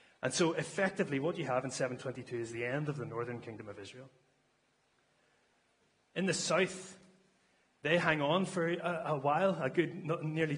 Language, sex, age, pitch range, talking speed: English, male, 30-49, 115-150 Hz, 170 wpm